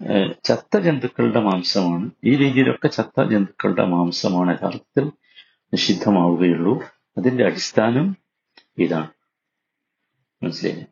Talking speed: 75 wpm